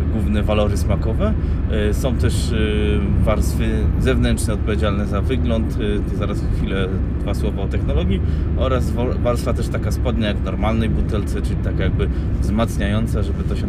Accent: native